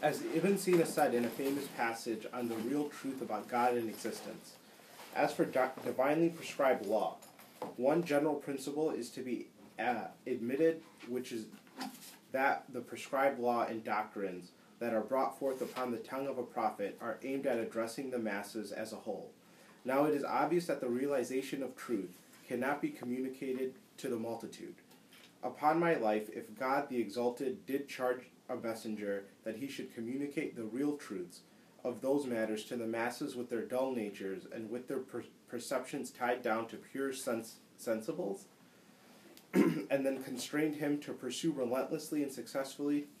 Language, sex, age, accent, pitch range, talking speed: English, male, 30-49, American, 120-140 Hz, 165 wpm